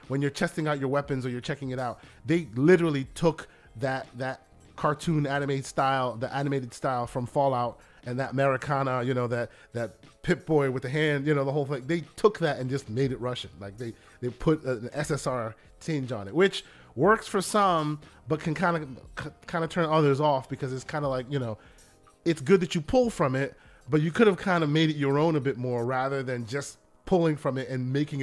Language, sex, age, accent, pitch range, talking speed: English, male, 30-49, American, 130-160 Hz, 225 wpm